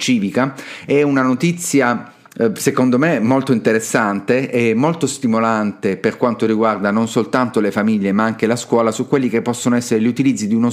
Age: 40-59